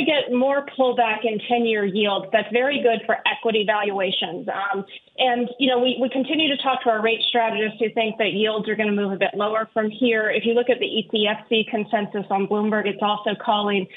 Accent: American